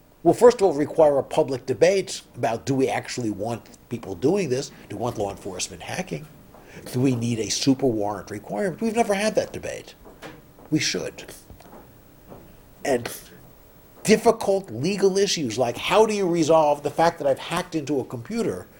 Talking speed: 165 wpm